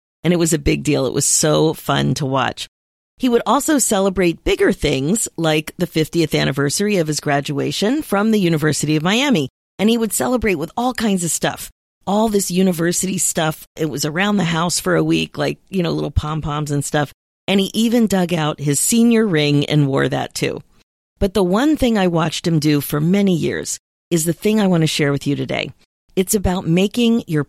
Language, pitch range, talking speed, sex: English, 155-210 Hz, 210 wpm, female